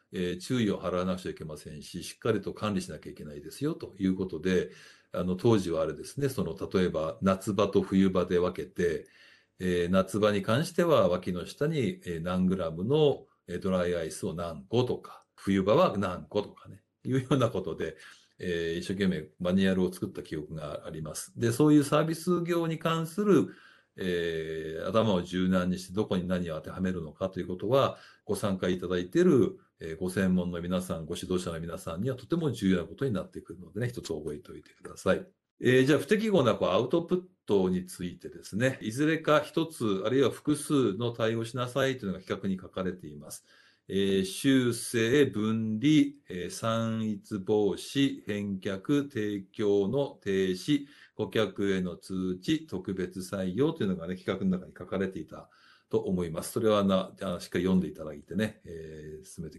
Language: Japanese